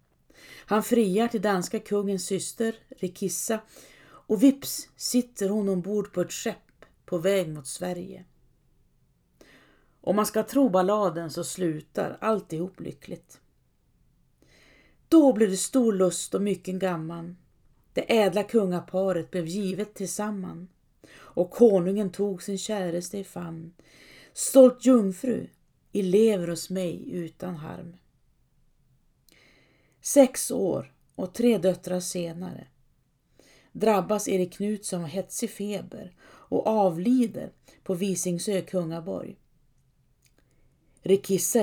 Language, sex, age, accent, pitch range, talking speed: Swedish, female, 40-59, native, 175-210 Hz, 110 wpm